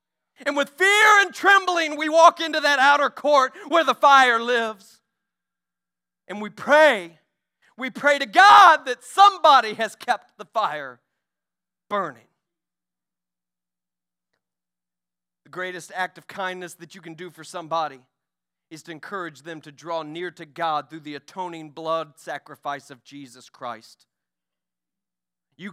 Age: 40-59